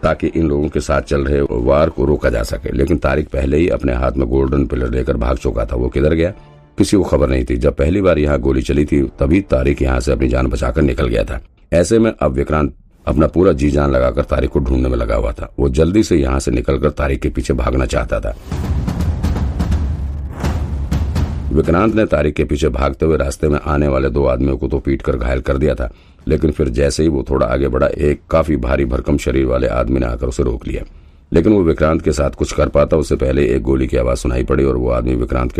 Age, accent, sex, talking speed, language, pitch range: 50-69, native, male, 145 wpm, Hindi, 65-75 Hz